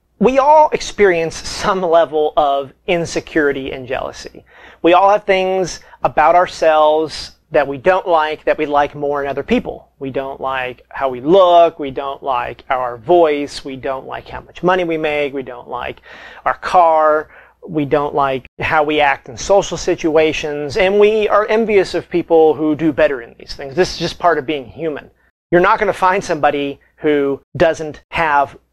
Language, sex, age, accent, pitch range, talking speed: English, male, 30-49, American, 140-175 Hz, 180 wpm